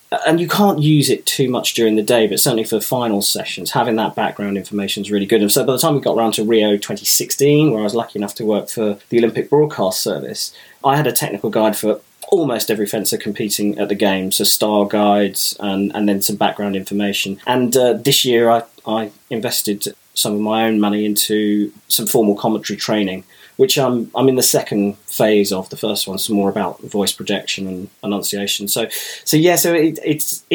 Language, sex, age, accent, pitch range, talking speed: English, male, 20-39, British, 100-120 Hz, 215 wpm